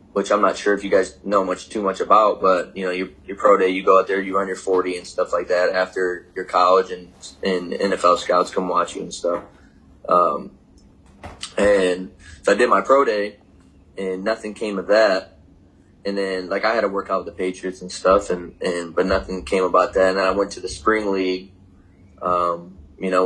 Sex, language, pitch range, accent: male, English, 90-100 Hz, American